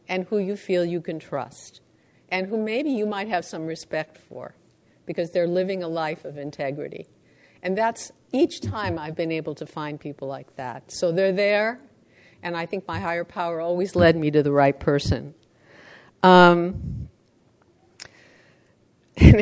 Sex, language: female, English